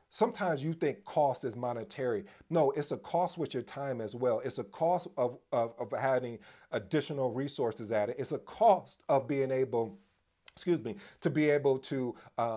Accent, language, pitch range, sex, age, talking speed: American, English, 110-140 Hz, male, 40-59, 185 wpm